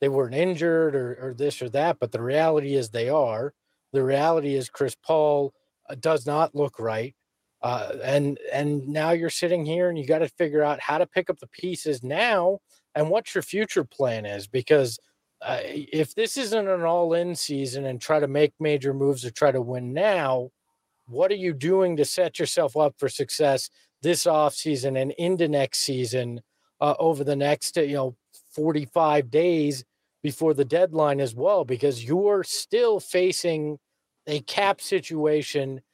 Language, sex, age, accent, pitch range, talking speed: English, male, 40-59, American, 140-170 Hz, 175 wpm